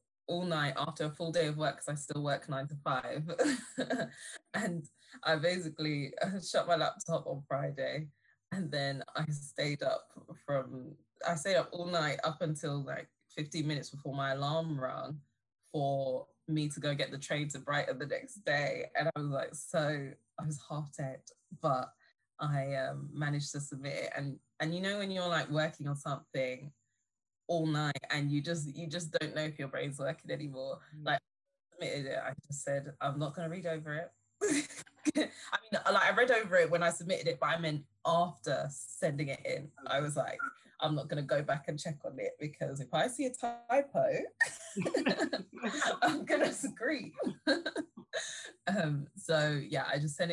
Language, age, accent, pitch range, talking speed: English, 10-29, British, 145-175 Hz, 180 wpm